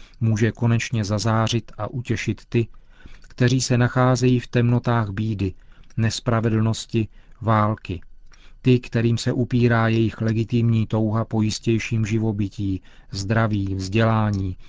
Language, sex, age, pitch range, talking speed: Czech, male, 40-59, 105-120 Hz, 105 wpm